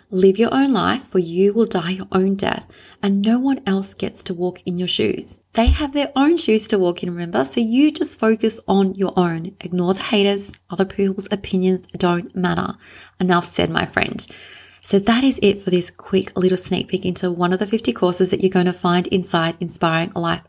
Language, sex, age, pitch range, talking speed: English, female, 30-49, 180-215 Hz, 215 wpm